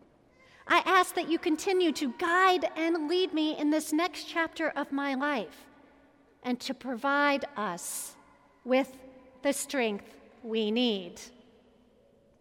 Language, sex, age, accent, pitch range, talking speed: English, female, 50-69, American, 260-330 Hz, 125 wpm